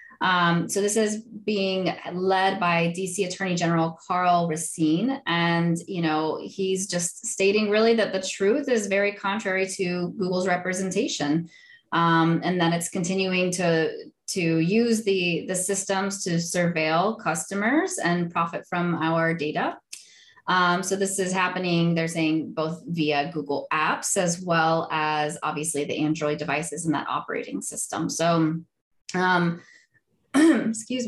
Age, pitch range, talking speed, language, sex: 20-39, 160-195 Hz, 140 wpm, English, female